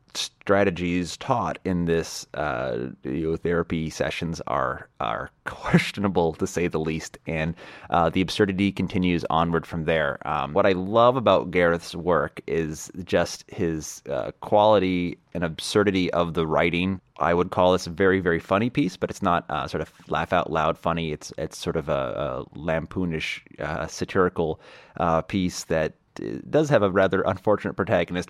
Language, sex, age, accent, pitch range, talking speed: English, male, 30-49, American, 80-95 Hz, 165 wpm